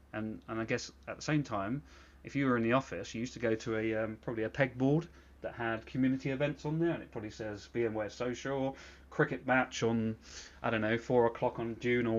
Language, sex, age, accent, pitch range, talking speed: English, male, 30-49, British, 100-125 Hz, 230 wpm